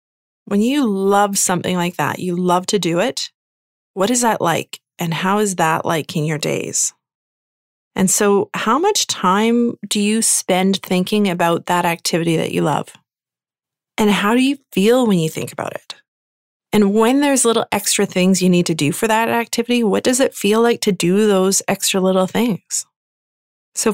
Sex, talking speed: female, 185 wpm